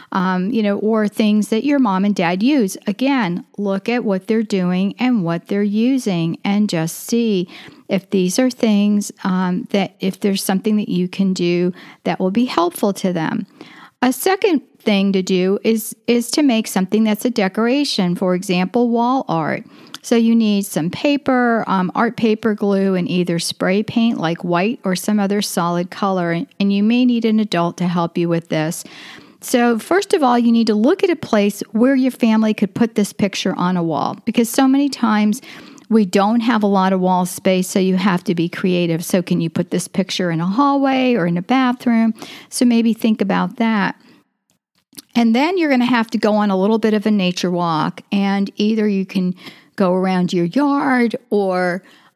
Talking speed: 200 wpm